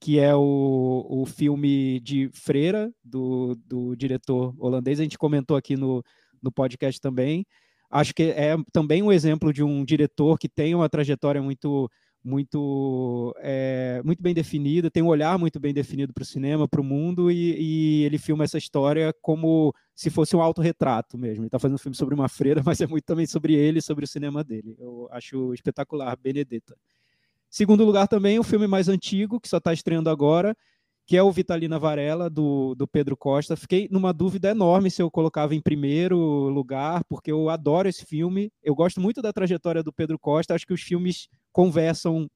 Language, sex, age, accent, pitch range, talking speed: Portuguese, male, 20-39, Brazilian, 140-170 Hz, 190 wpm